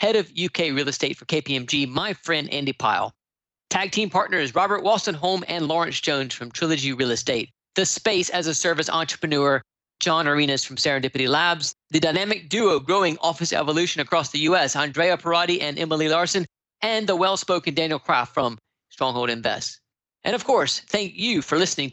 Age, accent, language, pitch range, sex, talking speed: 40-59, American, English, 140-185 Hz, male, 170 wpm